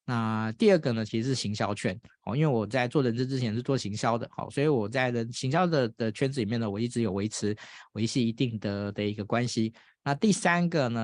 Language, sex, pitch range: Chinese, male, 105-135 Hz